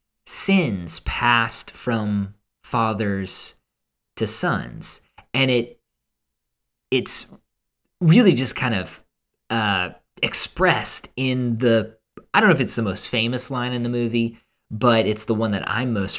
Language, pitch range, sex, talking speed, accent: English, 100-125 Hz, male, 135 wpm, American